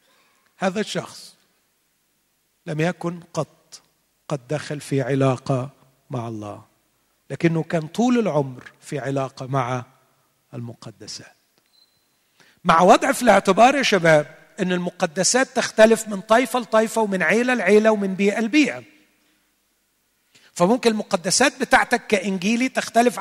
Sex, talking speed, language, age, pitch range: male, 110 wpm, Arabic, 40-59, 160-220 Hz